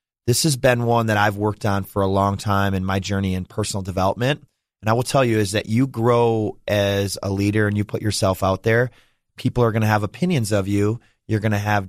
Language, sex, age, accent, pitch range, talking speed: English, male, 30-49, American, 100-110 Hz, 240 wpm